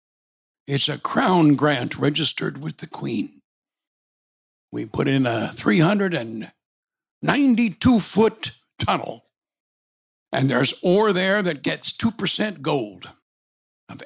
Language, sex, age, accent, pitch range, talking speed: English, male, 60-79, American, 125-195 Hz, 100 wpm